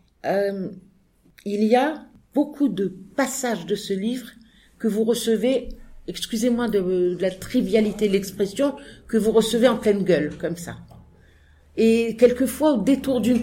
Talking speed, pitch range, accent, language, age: 145 wpm, 175-225 Hz, French, English, 50-69